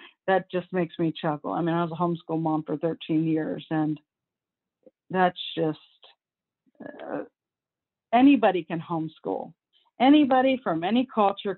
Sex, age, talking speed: female, 40-59, 135 wpm